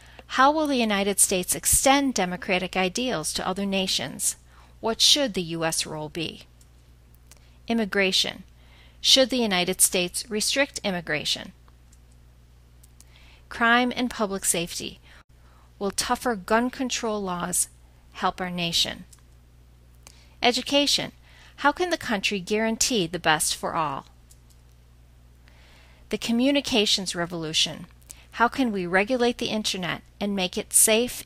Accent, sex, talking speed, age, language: American, female, 115 wpm, 40-59, English